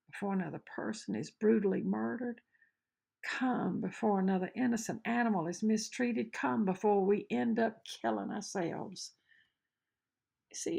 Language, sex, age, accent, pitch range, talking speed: English, female, 60-79, American, 185-235 Hz, 115 wpm